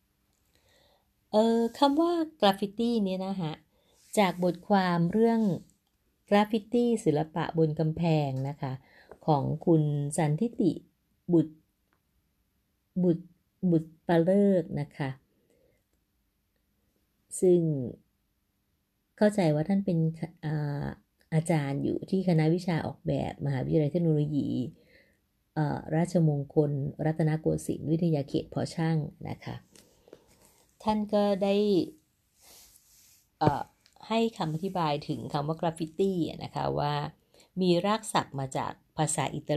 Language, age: Thai, 30-49